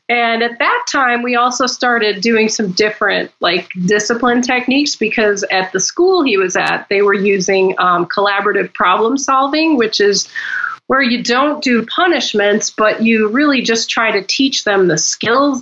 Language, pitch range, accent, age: English, 205-270 Hz, American, 30-49